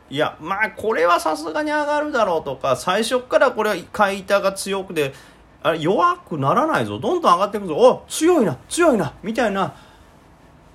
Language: Japanese